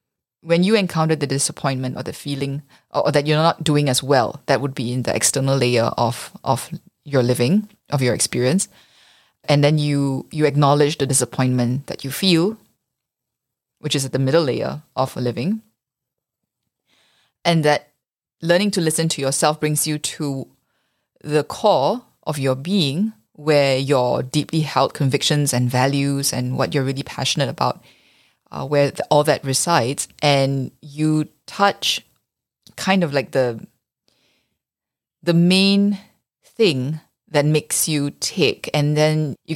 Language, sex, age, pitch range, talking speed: English, female, 20-39, 135-165 Hz, 150 wpm